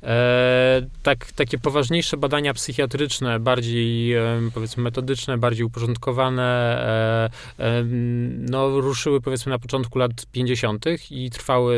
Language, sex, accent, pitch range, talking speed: Polish, male, native, 110-130 Hz, 115 wpm